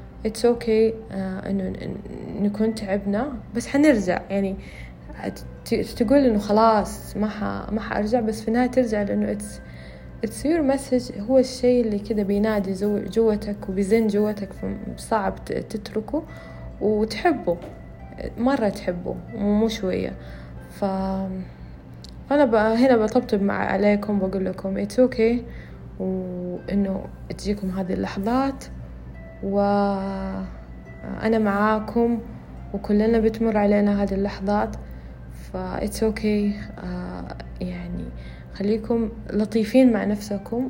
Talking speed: 100 wpm